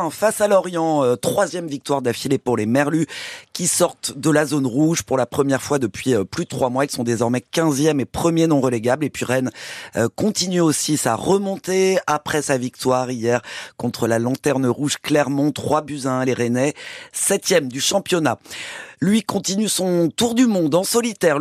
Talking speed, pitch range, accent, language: 180 wpm, 120-165 Hz, French, French